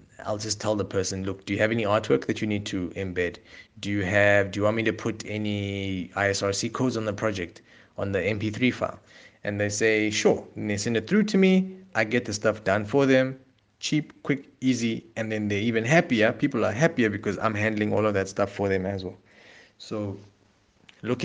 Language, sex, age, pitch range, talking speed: English, male, 30-49, 100-115 Hz, 215 wpm